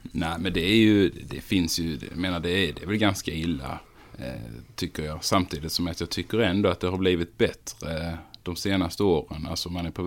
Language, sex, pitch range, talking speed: Swedish, male, 80-95 Hz, 220 wpm